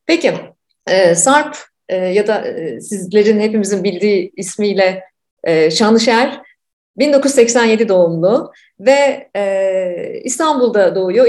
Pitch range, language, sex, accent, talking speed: 200-290 Hz, Turkish, female, native, 75 wpm